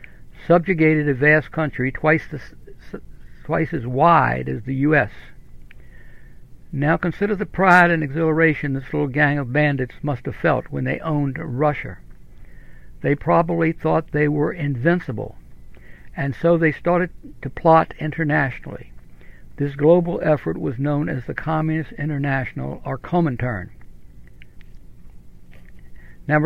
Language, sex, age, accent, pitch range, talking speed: English, male, 60-79, American, 130-160 Hz, 120 wpm